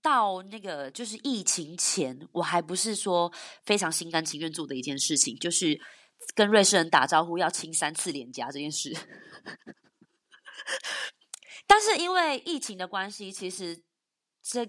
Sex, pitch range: female, 170-260 Hz